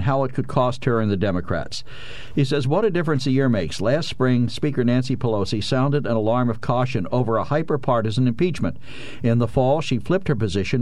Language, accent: English, American